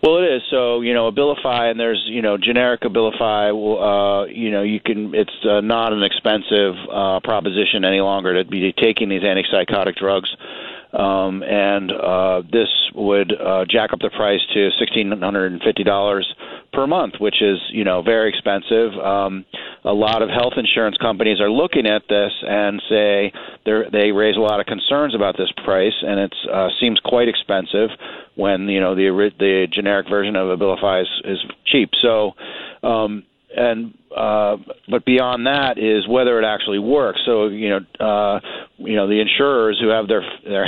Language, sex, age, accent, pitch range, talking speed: English, male, 40-59, American, 100-115 Hz, 180 wpm